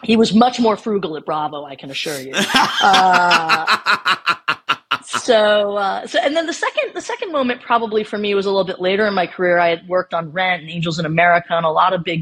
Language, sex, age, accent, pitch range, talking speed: English, female, 30-49, American, 155-195 Hz, 230 wpm